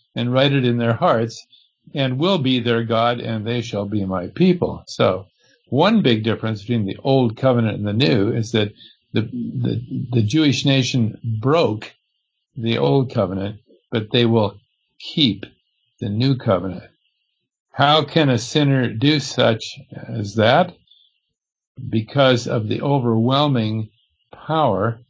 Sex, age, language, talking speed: male, 60-79, English, 140 wpm